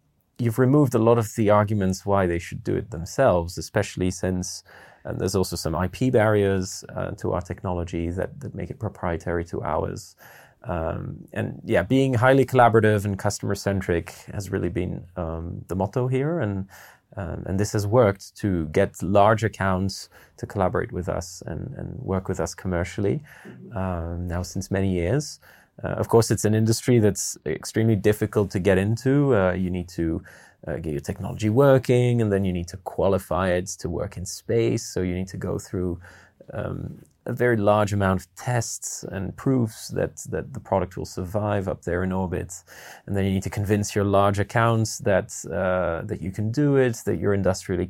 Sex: male